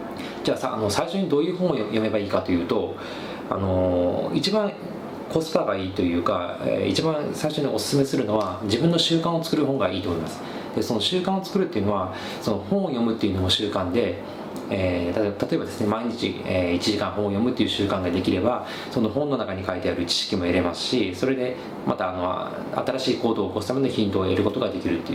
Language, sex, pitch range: Japanese, male, 95-150 Hz